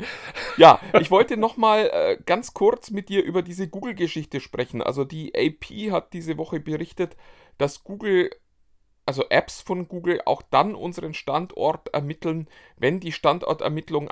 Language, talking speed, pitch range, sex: German, 140 wpm, 150-185 Hz, male